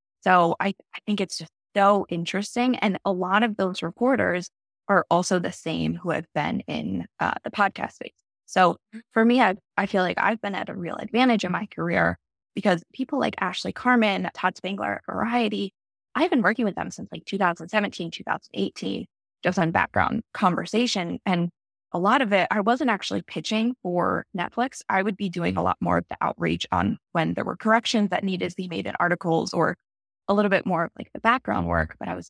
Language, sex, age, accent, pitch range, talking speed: English, female, 20-39, American, 180-220 Hz, 205 wpm